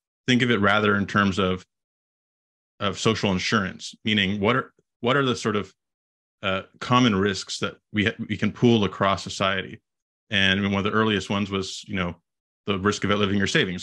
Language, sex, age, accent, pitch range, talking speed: English, male, 20-39, American, 95-110 Hz, 200 wpm